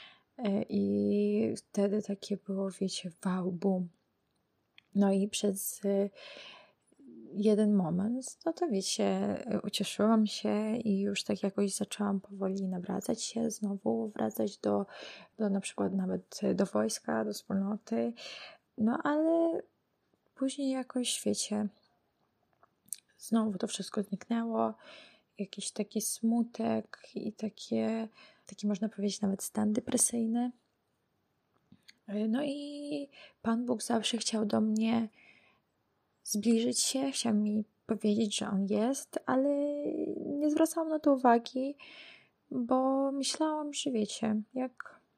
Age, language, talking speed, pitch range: 20-39, Polish, 110 wpm, 200-245 Hz